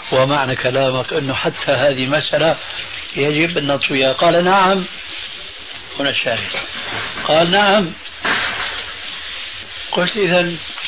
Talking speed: 95 wpm